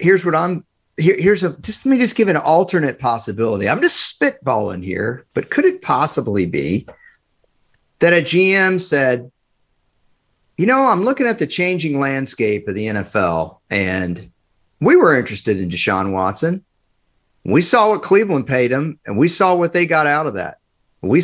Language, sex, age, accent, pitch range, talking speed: English, male, 50-69, American, 110-175 Hz, 170 wpm